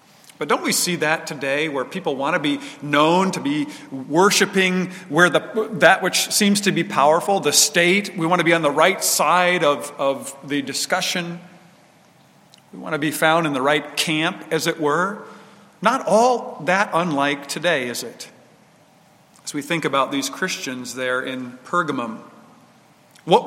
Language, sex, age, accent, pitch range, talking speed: English, male, 50-69, American, 155-200 Hz, 170 wpm